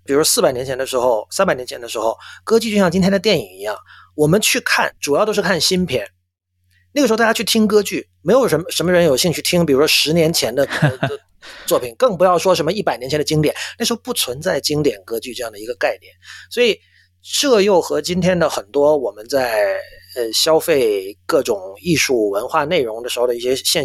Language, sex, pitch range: Chinese, male, 120-195 Hz